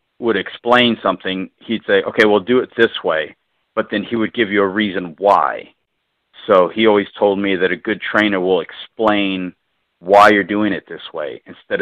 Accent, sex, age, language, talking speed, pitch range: American, male, 40-59, English, 195 wpm, 95-105 Hz